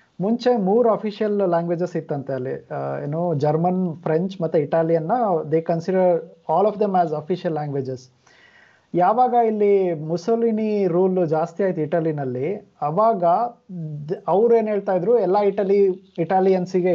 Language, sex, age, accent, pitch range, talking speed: Kannada, male, 20-39, native, 155-205 Hz, 125 wpm